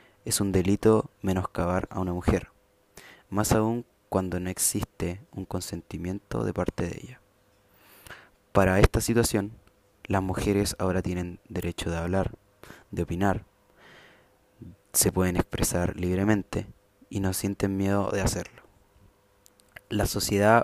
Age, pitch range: 20-39, 95-110 Hz